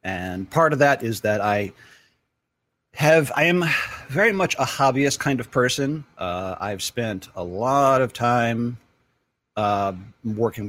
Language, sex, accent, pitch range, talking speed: English, male, American, 105-135 Hz, 145 wpm